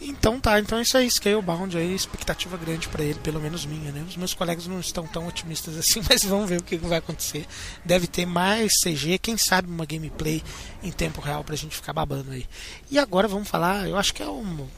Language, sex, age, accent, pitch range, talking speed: Portuguese, male, 20-39, Brazilian, 160-200 Hz, 225 wpm